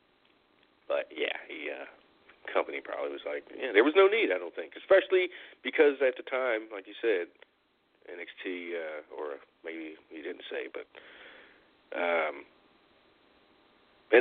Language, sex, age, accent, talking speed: English, male, 40-59, American, 140 wpm